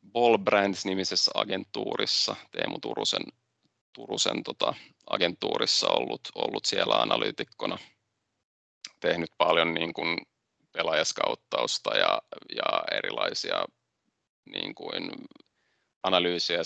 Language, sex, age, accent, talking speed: Finnish, male, 30-49, native, 85 wpm